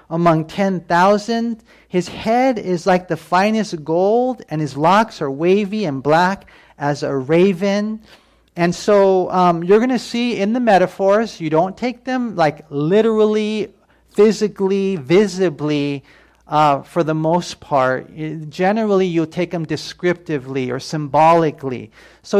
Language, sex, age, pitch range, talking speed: English, male, 40-59, 150-195 Hz, 135 wpm